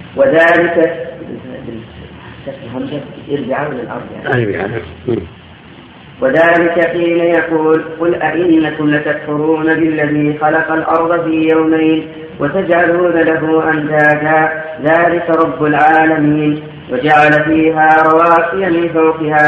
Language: Arabic